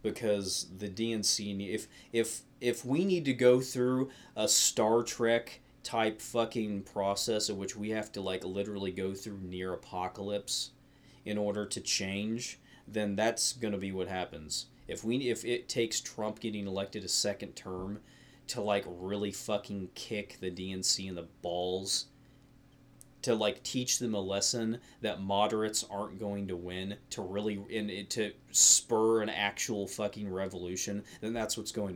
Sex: male